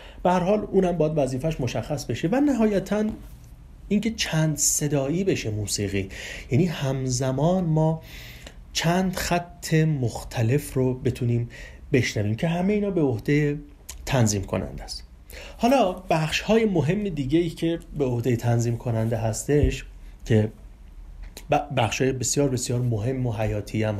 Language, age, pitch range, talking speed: Persian, 30-49, 115-175 Hz, 125 wpm